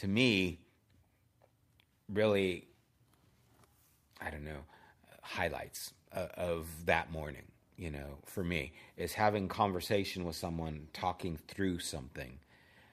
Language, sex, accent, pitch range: English, male, American, 80-100 Hz